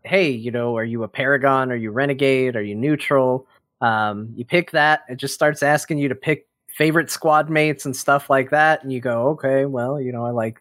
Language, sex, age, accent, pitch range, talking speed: English, male, 20-39, American, 125-150 Hz, 225 wpm